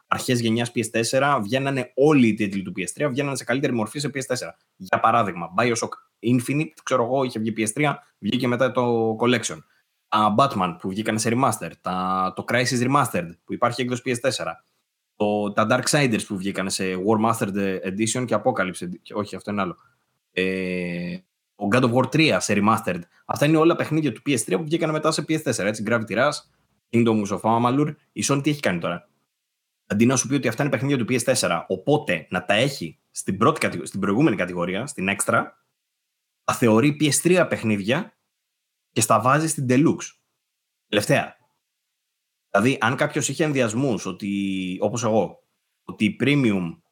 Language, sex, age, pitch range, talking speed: Greek, male, 20-39, 105-140 Hz, 160 wpm